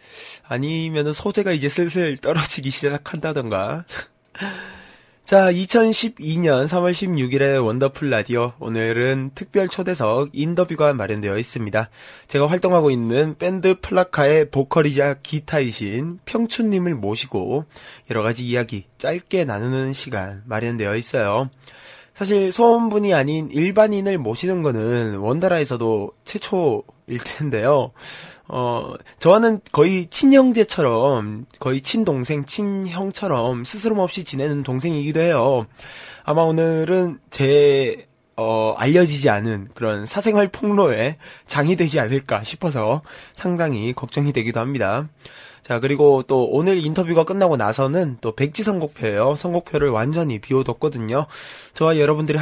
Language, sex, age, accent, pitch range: Korean, male, 20-39, native, 125-175 Hz